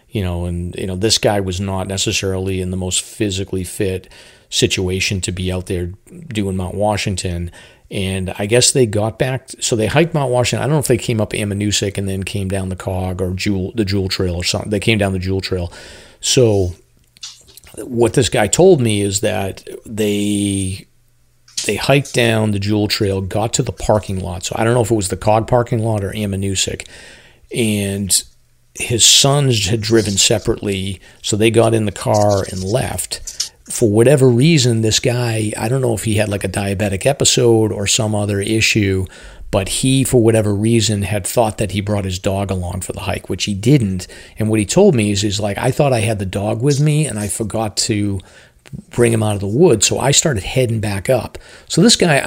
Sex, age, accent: male, 40-59, American